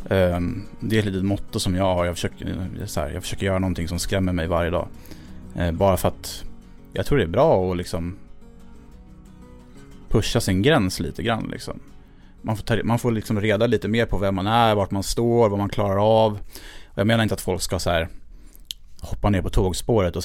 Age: 30-49